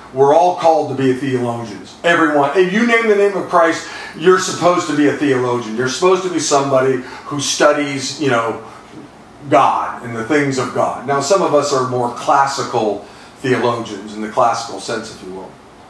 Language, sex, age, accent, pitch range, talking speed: English, male, 50-69, American, 125-155 Hz, 190 wpm